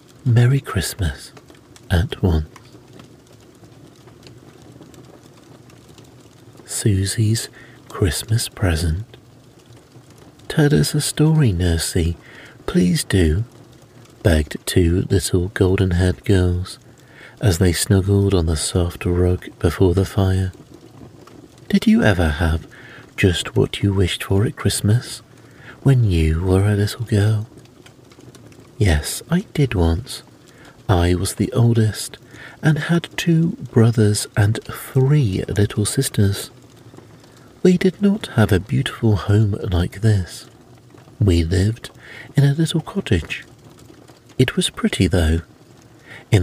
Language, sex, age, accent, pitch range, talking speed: English, male, 50-69, British, 90-125 Hz, 105 wpm